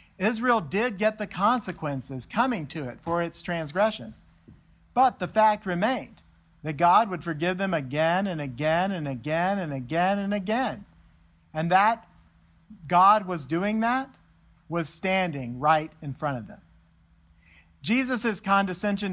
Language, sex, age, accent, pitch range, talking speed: English, male, 50-69, American, 140-195 Hz, 140 wpm